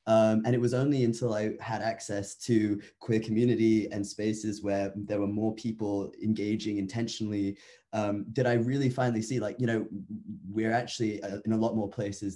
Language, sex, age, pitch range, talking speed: English, male, 20-39, 95-110 Hz, 185 wpm